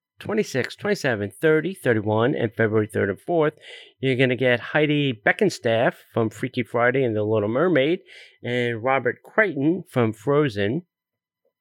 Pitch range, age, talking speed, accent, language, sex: 115-160 Hz, 40-59, 140 wpm, American, English, male